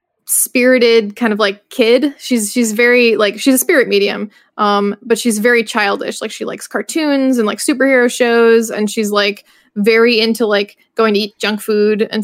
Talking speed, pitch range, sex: 185 wpm, 210-250 Hz, female